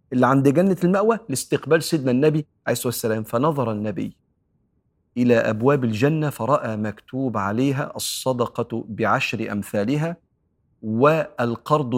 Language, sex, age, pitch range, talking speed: Arabic, male, 40-59, 110-140 Hz, 110 wpm